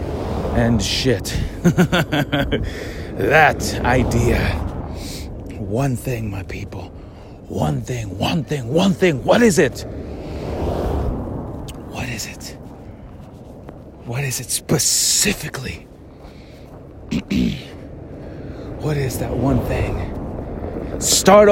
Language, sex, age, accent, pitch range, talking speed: English, male, 30-49, American, 95-140 Hz, 85 wpm